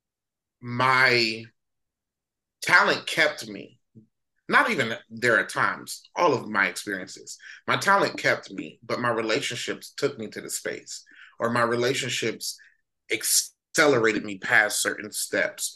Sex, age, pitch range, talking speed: male, 30-49, 115-145 Hz, 125 wpm